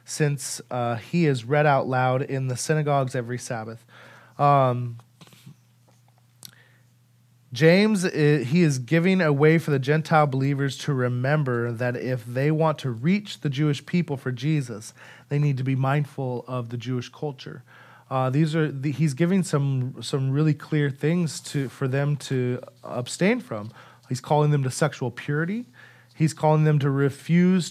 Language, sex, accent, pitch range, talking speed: English, male, American, 125-155 Hz, 160 wpm